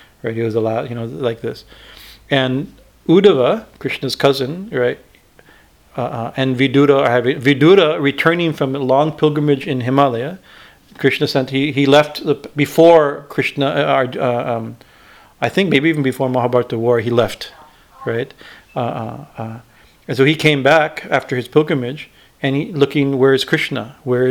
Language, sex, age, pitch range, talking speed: English, male, 40-59, 125-145 Hz, 155 wpm